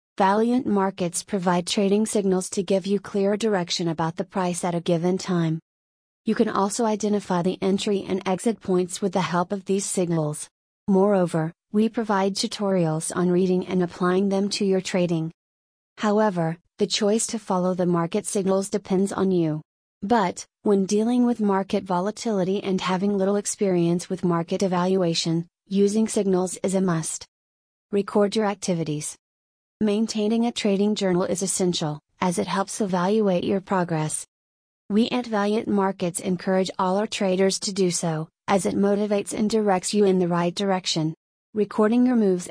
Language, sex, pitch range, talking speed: English, female, 180-205 Hz, 160 wpm